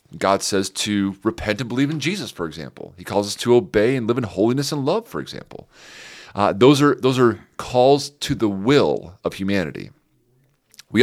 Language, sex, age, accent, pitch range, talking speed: English, male, 30-49, American, 95-125 Hz, 190 wpm